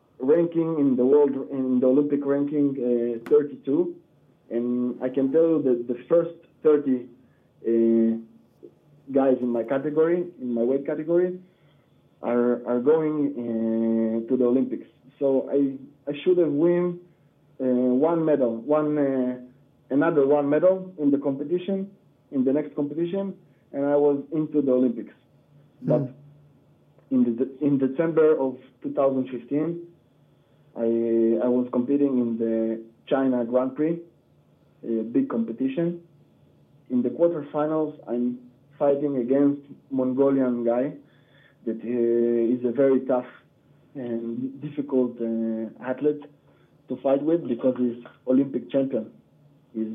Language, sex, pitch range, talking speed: English, male, 125-150 Hz, 130 wpm